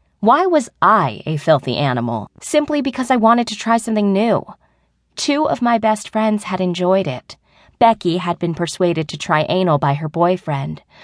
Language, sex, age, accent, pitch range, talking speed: English, female, 20-39, American, 150-225 Hz, 175 wpm